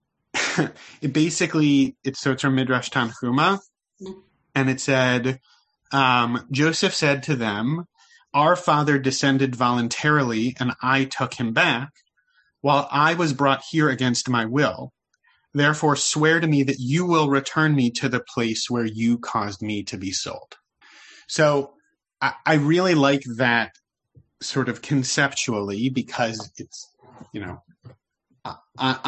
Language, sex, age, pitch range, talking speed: English, male, 30-49, 120-150 Hz, 140 wpm